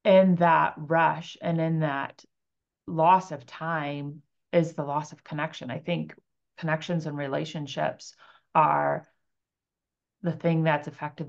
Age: 30-49